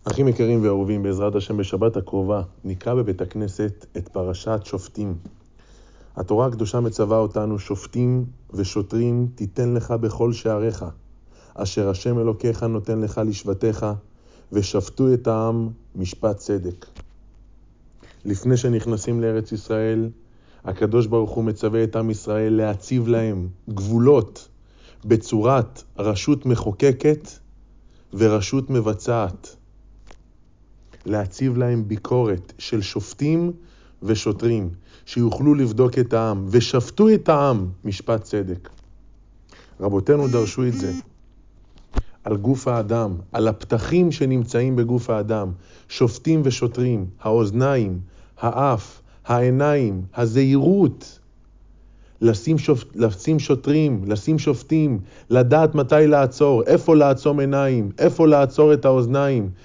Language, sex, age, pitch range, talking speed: Hebrew, male, 30-49, 105-125 Hz, 100 wpm